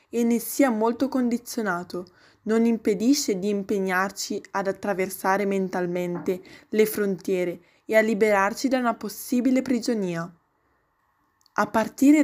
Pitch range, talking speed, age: 195-250 Hz, 115 wpm, 10-29